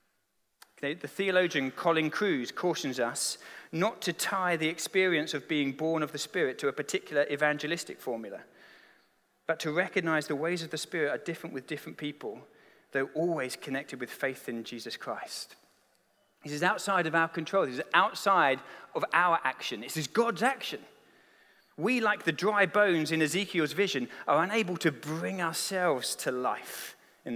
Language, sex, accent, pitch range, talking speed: English, male, British, 145-190 Hz, 165 wpm